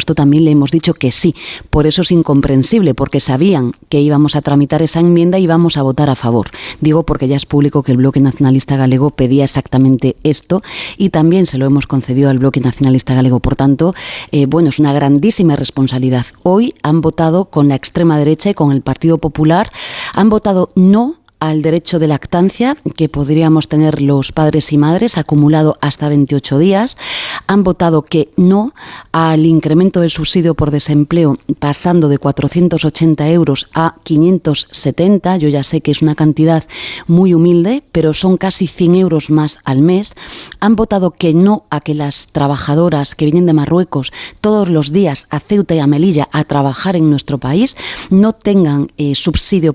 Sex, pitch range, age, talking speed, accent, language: female, 140-175 Hz, 30-49, 180 wpm, Spanish, Spanish